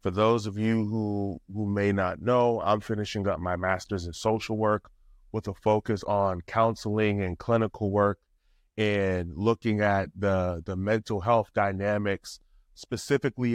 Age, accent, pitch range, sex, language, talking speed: 30-49, American, 95-125 Hz, male, English, 150 wpm